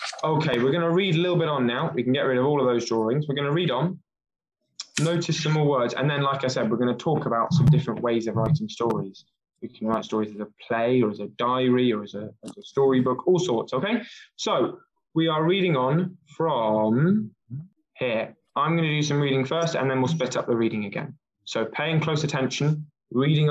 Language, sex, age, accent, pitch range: Chinese, male, 20-39, British, 115-155 Hz